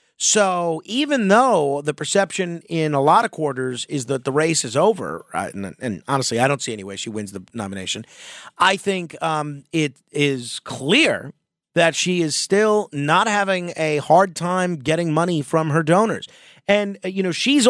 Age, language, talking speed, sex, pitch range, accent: 40-59, English, 175 wpm, male, 140-170 Hz, American